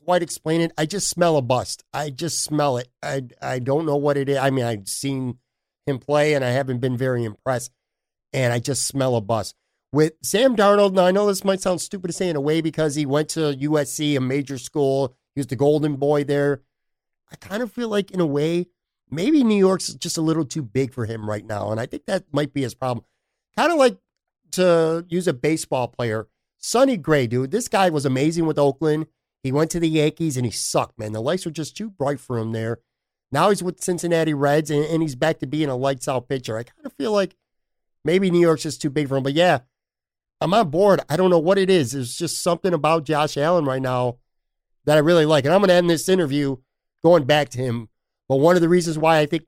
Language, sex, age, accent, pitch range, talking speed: English, male, 50-69, American, 130-170 Hz, 240 wpm